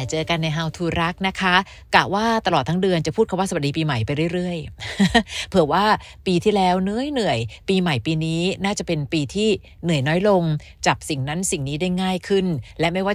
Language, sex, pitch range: Thai, female, 150-190 Hz